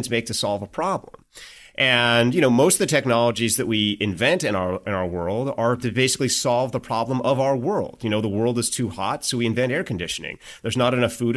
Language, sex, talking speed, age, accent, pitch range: English, male, 235 wpm, 30-49, American, 115-145 Hz